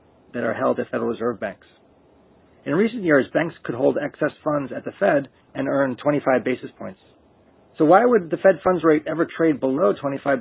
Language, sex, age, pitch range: English, male, 30-49, 125-155 Hz